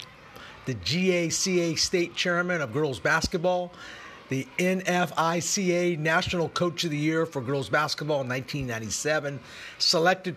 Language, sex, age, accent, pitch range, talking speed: English, male, 50-69, American, 120-165 Hz, 115 wpm